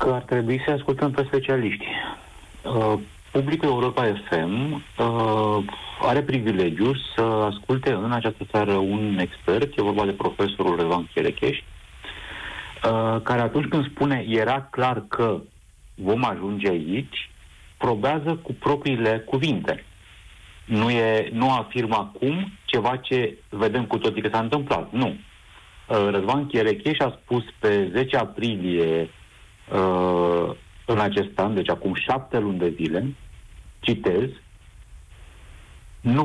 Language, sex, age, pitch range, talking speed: Romanian, male, 50-69, 100-125 Hz, 115 wpm